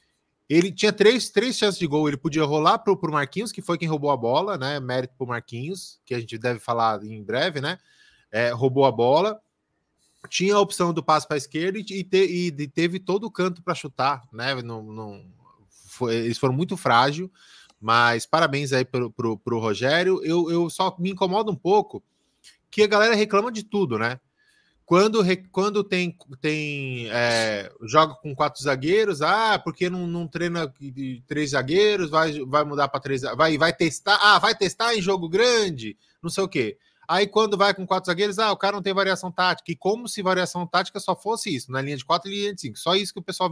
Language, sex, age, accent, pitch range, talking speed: Portuguese, male, 20-39, Brazilian, 135-195 Hz, 210 wpm